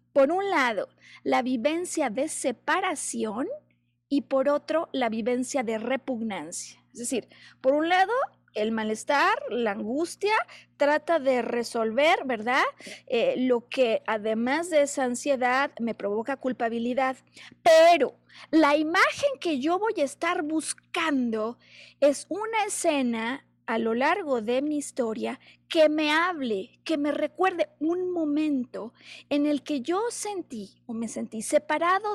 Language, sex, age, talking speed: Spanish, female, 30-49, 135 wpm